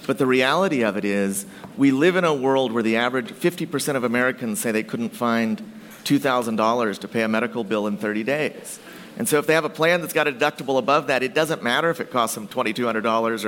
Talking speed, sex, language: 225 wpm, male, English